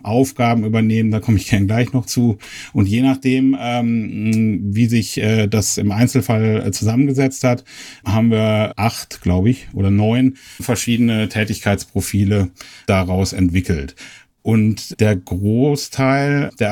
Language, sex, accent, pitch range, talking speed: German, male, German, 100-125 Hz, 135 wpm